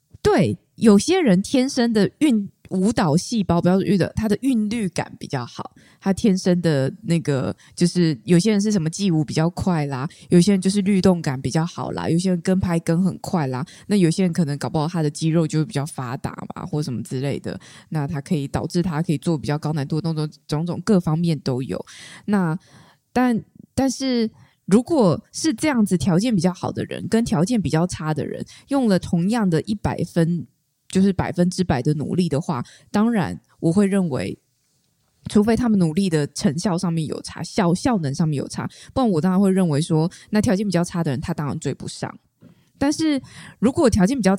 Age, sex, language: 20-39, female, Chinese